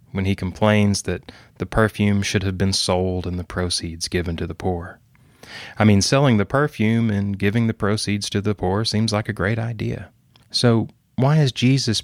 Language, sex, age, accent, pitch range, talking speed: English, male, 30-49, American, 95-120 Hz, 190 wpm